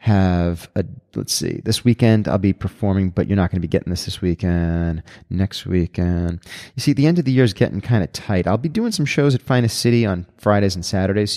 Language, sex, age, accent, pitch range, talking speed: English, male, 30-49, American, 90-105 Hz, 245 wpm